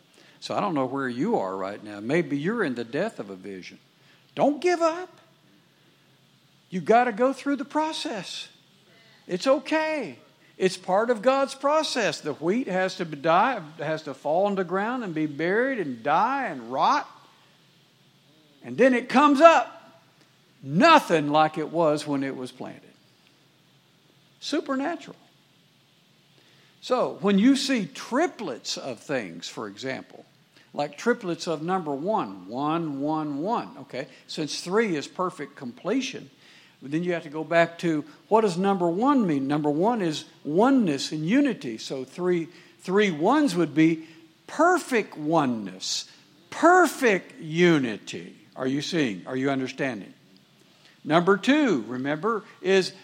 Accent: American